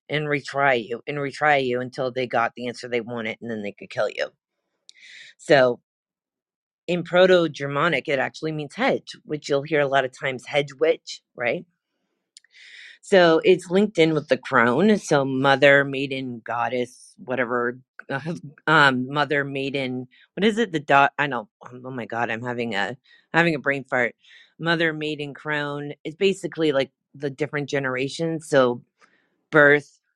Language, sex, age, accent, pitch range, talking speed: English, female, 30-49, American, 130-170 Hz, 160 wpm